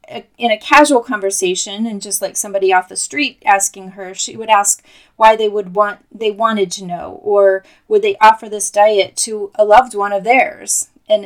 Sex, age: female, 30-49